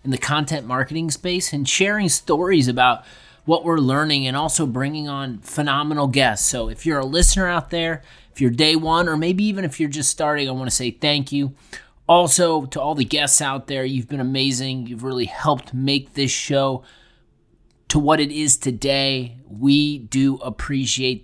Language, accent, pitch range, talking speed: English, American, 125-155 Hz, 185 wpm